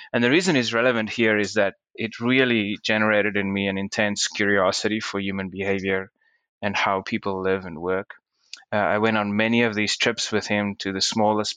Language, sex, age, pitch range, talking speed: English, male, 20-39, 95-110 Hz, 195 wpm